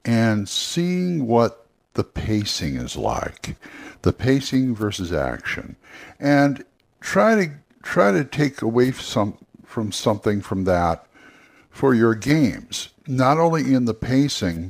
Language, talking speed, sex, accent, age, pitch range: English, 125 wpm, male, American, 60-79, 100-135 Hz